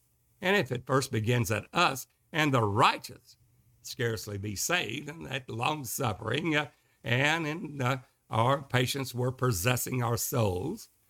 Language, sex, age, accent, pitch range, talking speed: English, male, 60-79, American, 100-145 Hz, 145 wpm